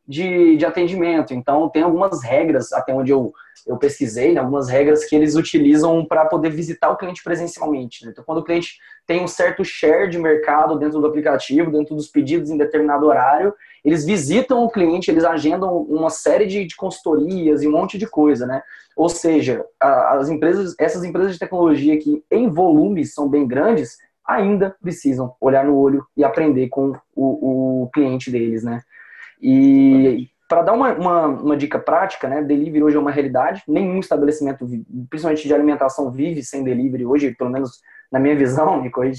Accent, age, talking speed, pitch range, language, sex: Brazilian, 20-39, 180 wpm, 140-185 Hz, Portuguese, male